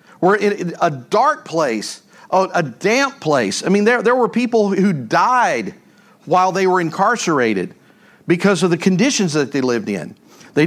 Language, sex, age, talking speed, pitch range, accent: English, male, 50-69, 165 wpm, 190-240 Hz, American